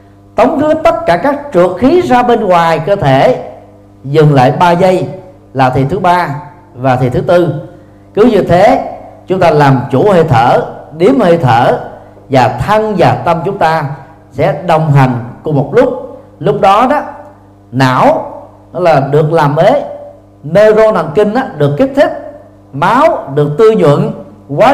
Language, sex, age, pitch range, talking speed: Vietnamese, male, 40-59, 130-185 Hz, 165 wpm